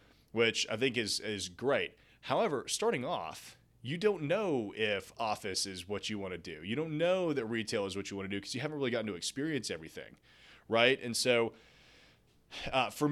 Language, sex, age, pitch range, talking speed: English, male, 30-49, 105-130 Hz, 200 wpm